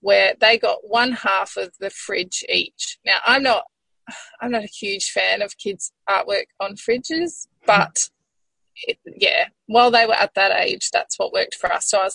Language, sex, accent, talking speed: English, female, Australian, 190 wpm